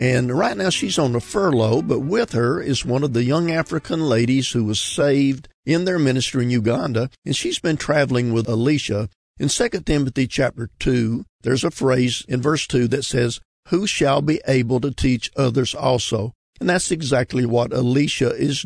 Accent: American